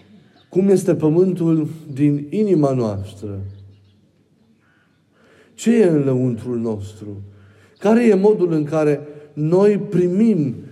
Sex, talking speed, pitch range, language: male, 100 wpm, 120-155 Hz, Romanian